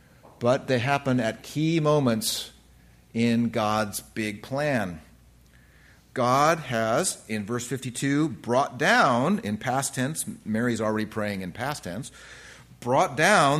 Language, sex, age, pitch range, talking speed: English, male, 40-59, 105-140 Hz, 125 wpm